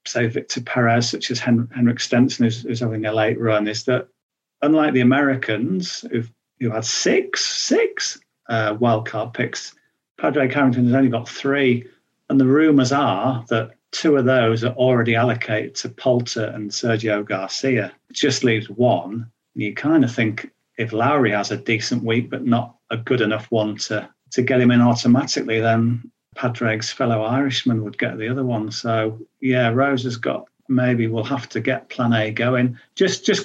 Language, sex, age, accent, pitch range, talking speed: English, male, 40-59, British, 115-130 Hz, 180 wpm